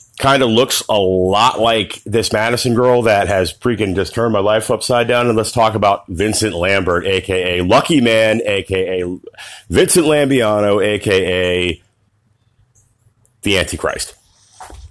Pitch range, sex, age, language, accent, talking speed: 100-125 Hz, male, 30-49, English, American, 135 wpm